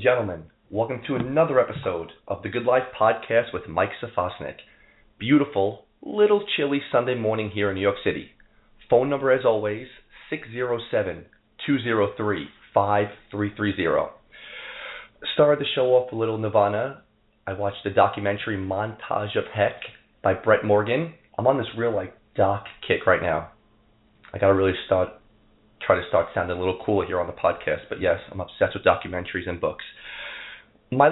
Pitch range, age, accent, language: 100-130 Hz, 30-49, American, English